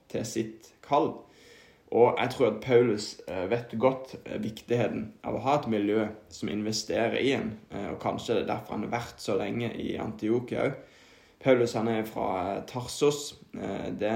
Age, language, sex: 20-39, English, male